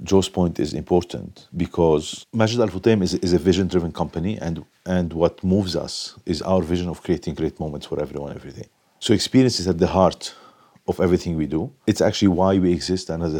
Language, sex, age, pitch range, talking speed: English, male, 50-69, 85-100 Hz, 195 wpm